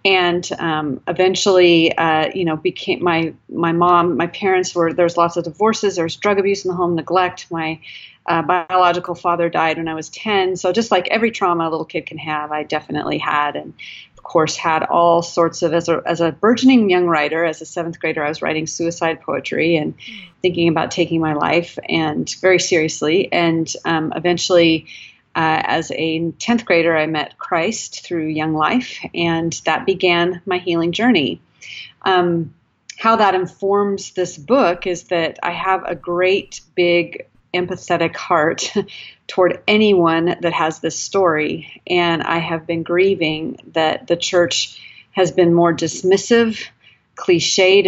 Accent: American